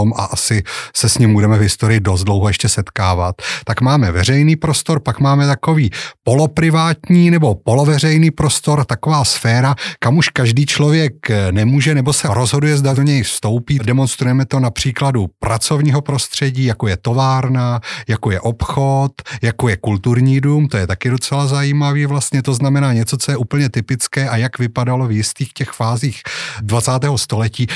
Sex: male